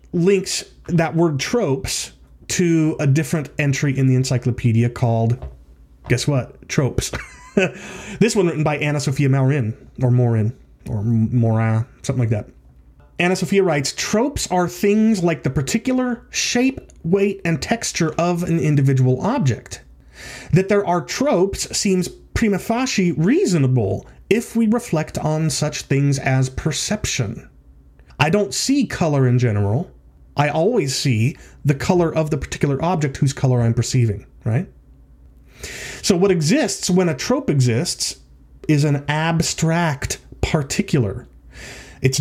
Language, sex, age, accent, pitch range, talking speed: English, male, 30-49, American, 125-185 Hz, 135 wpm